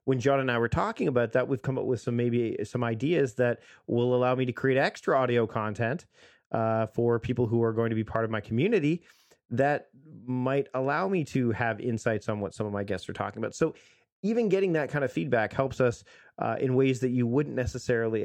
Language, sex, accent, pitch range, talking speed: English, male, American, 115-145 Hz, 225 wpm